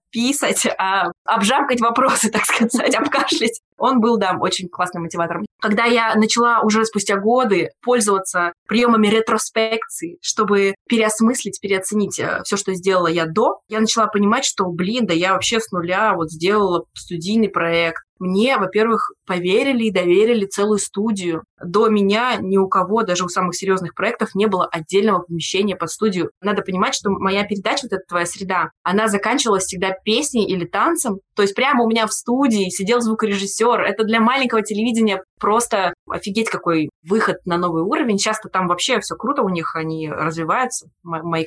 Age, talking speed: 20-39, 160 wpm